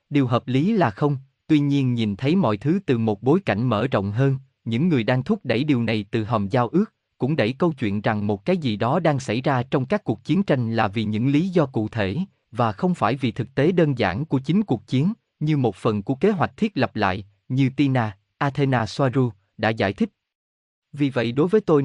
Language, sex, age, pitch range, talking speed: Vietnamese, male, 20-39, 110-155 Hz, 235 wpm